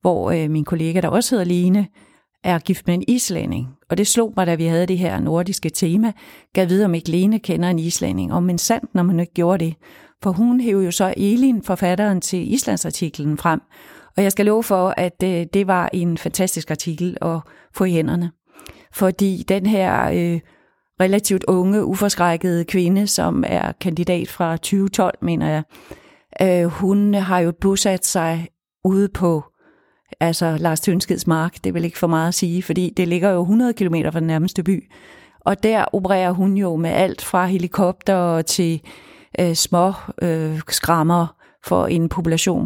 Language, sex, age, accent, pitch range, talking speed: Danish, female, 40-59, native, 170-195 Hz, 180 wpm